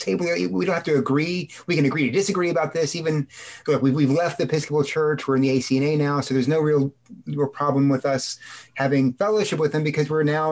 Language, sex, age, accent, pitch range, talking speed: English, male, 30-49, American, 125-155 Hz, 235 wpm